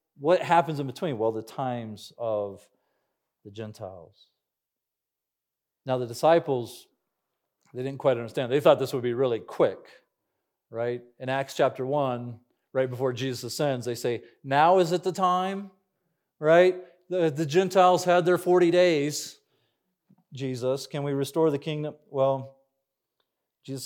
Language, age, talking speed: English, 40-59, 140 wpm